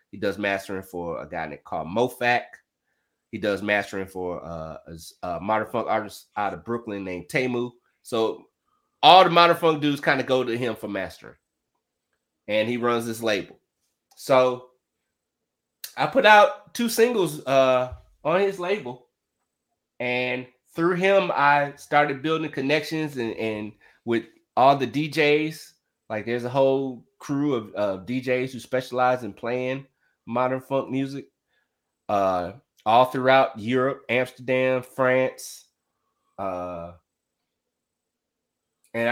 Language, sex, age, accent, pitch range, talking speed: English, male, 30-49, American, 115-135 Hz, 135 wpm